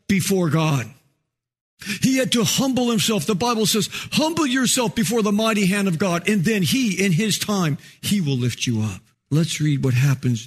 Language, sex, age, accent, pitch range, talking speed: English, male, 50-69, American, 135-190 Hz, 190 wpm